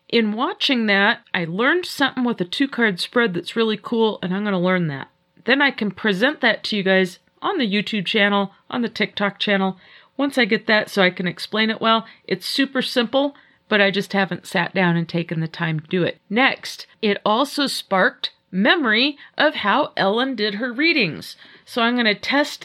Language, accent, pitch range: English, American, 190-245 Hz